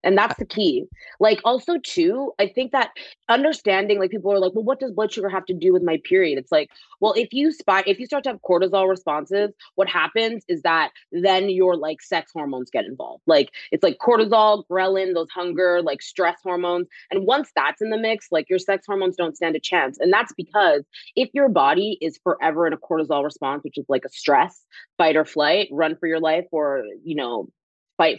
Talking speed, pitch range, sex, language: 215 wpm, 160-215 Hz, female, English